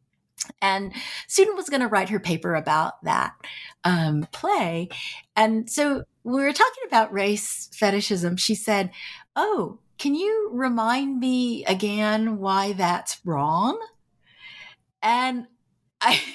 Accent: American